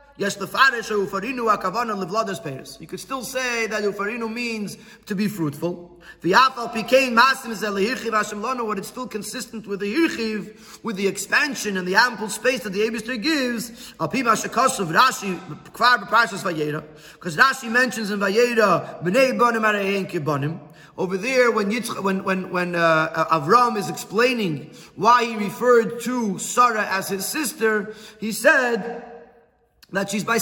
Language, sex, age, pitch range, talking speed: English, male, 30-49, 195-250 Hz, 110 wpm